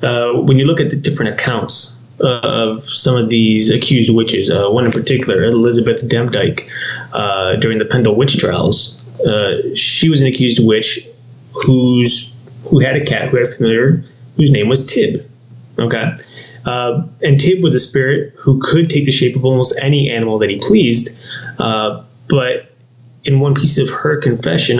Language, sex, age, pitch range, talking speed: English, male, 20-39, 120-140 Hz, 175 wpm